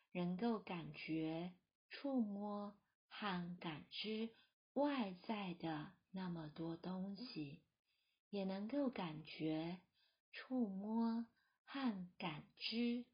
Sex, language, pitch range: female, Chinese, 175-230 Hz